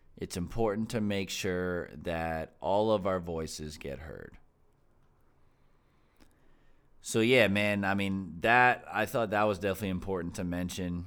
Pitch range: 80-105 Hz